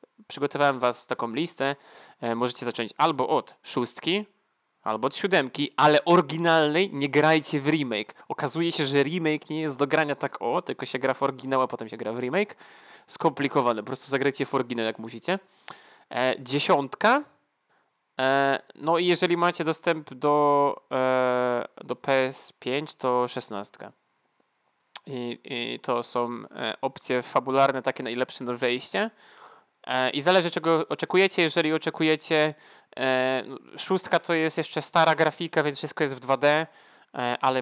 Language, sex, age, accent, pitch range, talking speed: Polish, male, 20-39, native, 125-165 Hz, 145 wpm